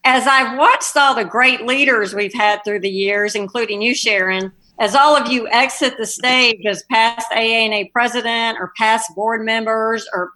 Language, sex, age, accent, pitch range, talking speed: English, female, 50-69, American, 195-245 Hz, 180 wpm